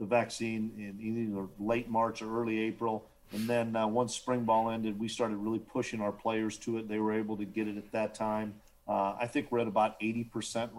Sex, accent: male, American